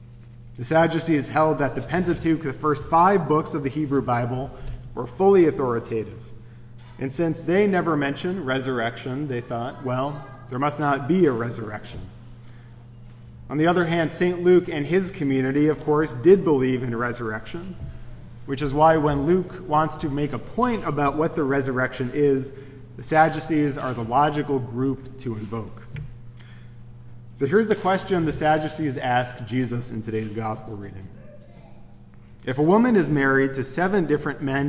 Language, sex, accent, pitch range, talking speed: English, male, American, 120-155 Hz, 155 wpm